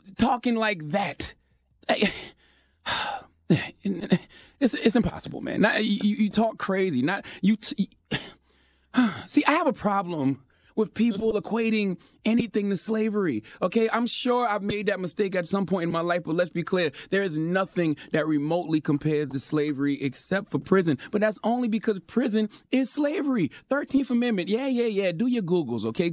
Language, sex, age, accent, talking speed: English, male, 30-49, American, 165 wpm